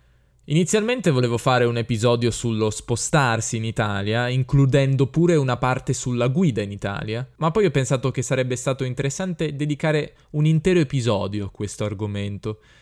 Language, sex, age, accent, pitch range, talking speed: Italian, male, 10-29, native, 115-145 Hz, 150 wpm